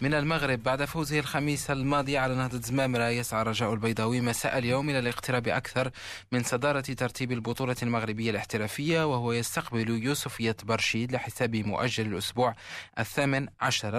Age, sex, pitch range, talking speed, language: 20-39, male, 115-135 Hz, 140 wpm, Arabic